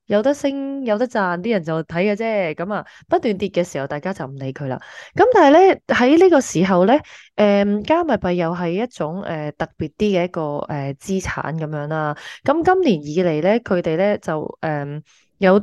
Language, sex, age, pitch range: Chinese, female, 20-39, 165-215 Hz